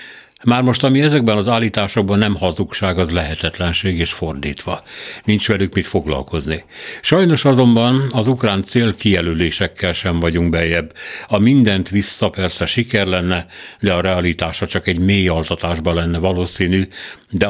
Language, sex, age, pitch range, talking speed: Hungarian, male, 60-79, 85-105 Hz, 135 wpm